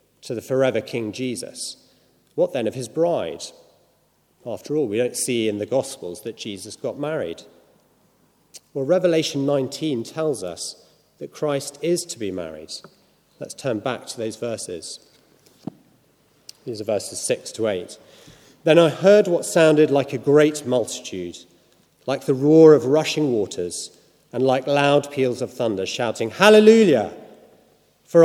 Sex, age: male, 40-59